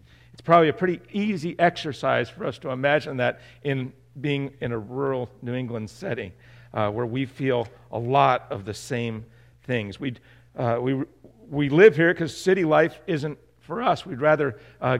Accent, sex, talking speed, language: American, male, 175 wpm, English